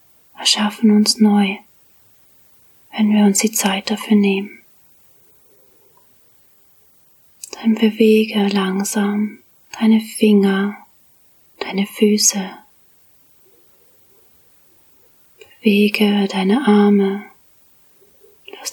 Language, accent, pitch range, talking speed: German, German, 200-225 Hz, 65 wpm